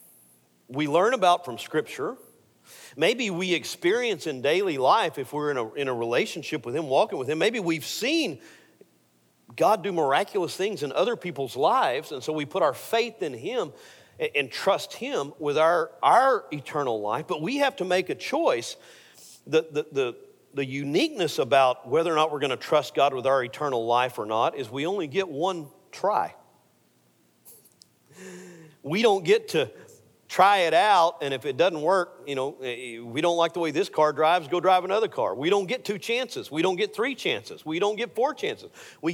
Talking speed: 190 wpm